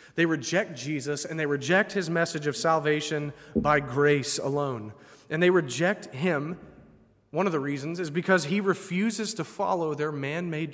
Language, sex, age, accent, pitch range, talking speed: English, male, 30-49, American, 130-170 Hz, 160 wpm